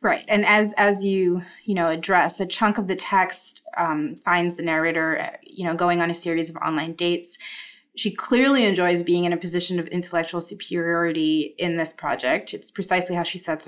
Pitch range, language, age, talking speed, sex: 175-215 Hz, English, 20-39, 195 wpm, female